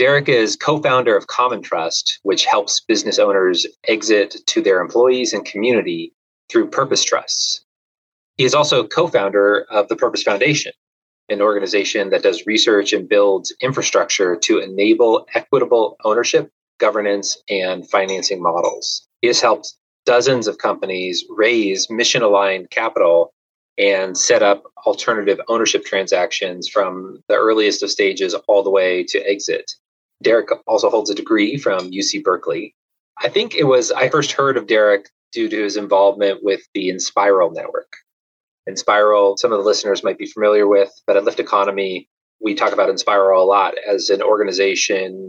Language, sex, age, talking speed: English, male, 30-49, 150 wpm